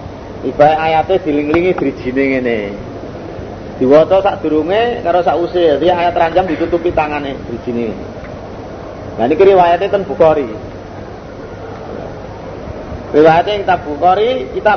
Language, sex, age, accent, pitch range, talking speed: Indonesian, male, 40-59, native, 115-190 Hz, 100 wpm